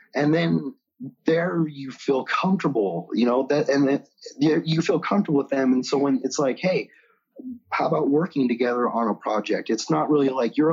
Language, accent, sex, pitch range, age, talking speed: English, American, male, 120-160 Hz, 30-49, 190 wpm